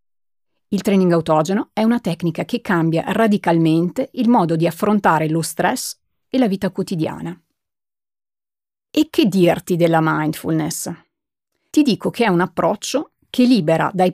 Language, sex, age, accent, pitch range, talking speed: Italian, female, 40-59, native, 170-240 Hz, 140 wpm